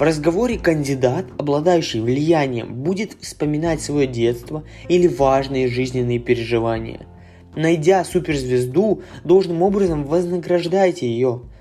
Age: 20-39